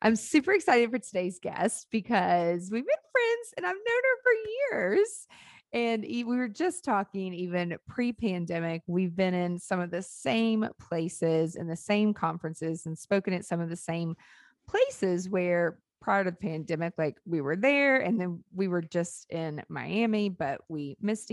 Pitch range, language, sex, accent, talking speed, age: 170-220 Hz, English, female, American, 175 wpm, 30-49